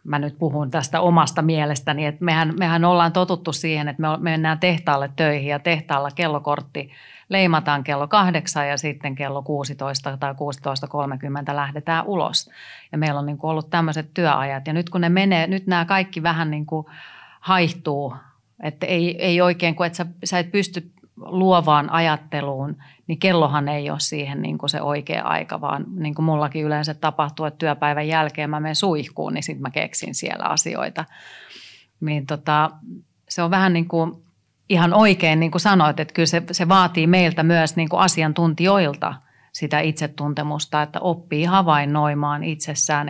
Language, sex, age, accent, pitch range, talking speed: Finnish, female, 30-49, native, 150-170 Hz, 155 wpm